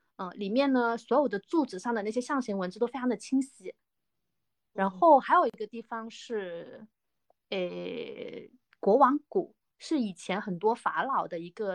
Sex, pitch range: female, 195-250 Hz